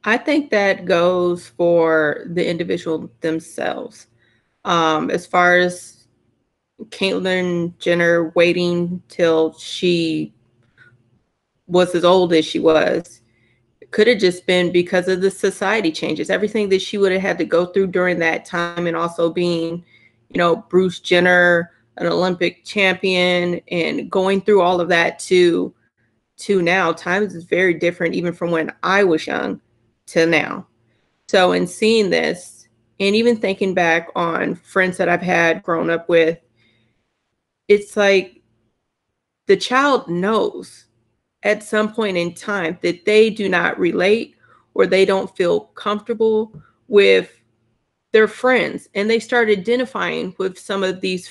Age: 30-49